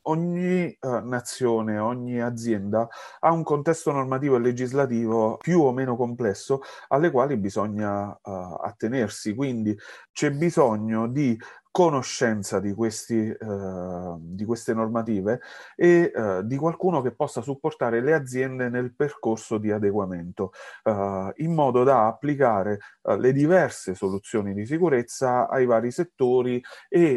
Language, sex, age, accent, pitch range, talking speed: Italian, male, 30-49, native, 105-135 Hz, 130 wpm